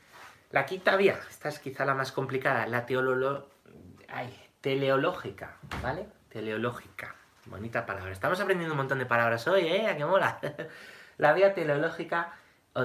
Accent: Spanish